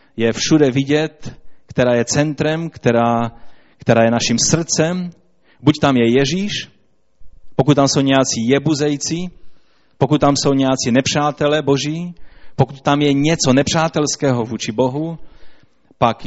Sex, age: male, 30-49